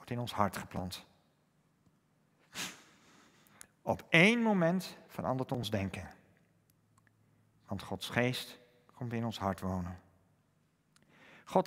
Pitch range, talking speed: 115-175 Hz, 100 wpm